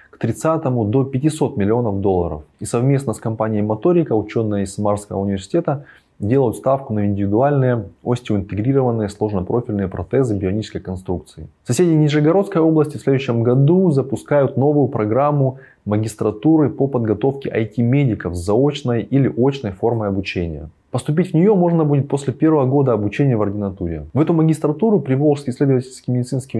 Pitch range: 105-140 Hz